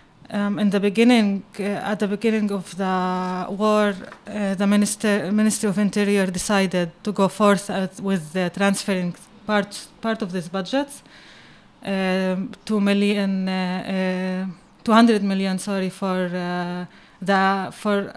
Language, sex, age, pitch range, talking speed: Arabic, female, 20-39, 185-205 Hz, 140 wpm